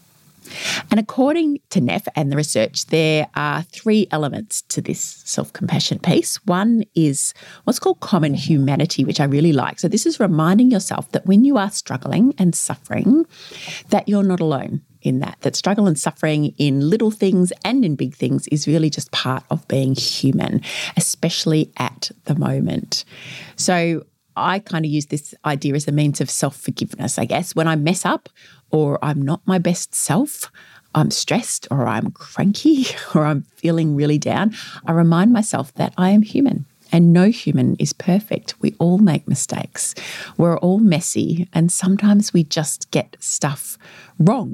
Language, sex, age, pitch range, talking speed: English, female, 30-49, 150-195 Hz, 170 wpm